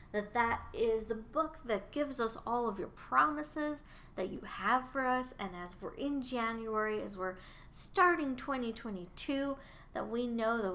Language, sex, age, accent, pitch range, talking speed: English, female, 10-29, American, 195-255 Hz, 165 wpm